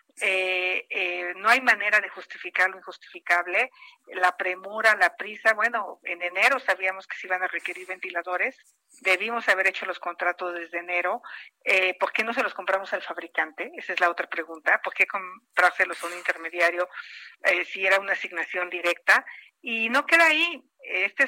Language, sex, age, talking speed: Spanish, female, 50-69, 170 wpm